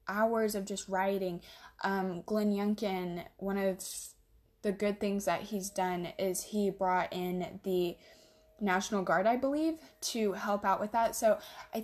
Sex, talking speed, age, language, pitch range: female, 155 wpm, 10-29, English, 185-215 Hz